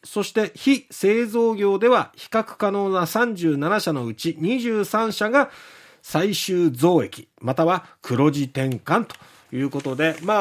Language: Japanese